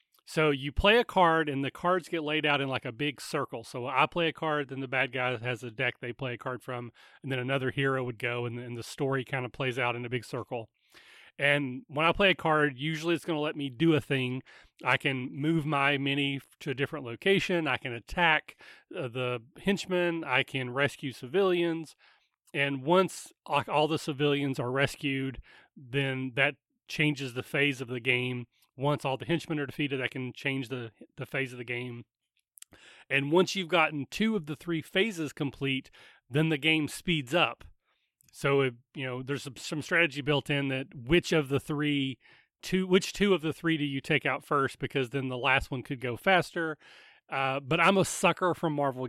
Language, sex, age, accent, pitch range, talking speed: English, male, 30-49, American, 130-160 Hz, 205 wpm